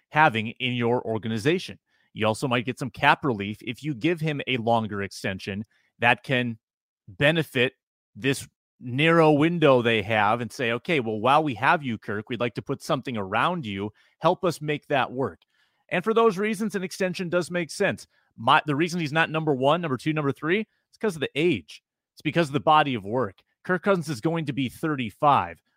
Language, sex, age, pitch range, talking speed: English, male, 30-49, 125-155 Hz, 200 wpm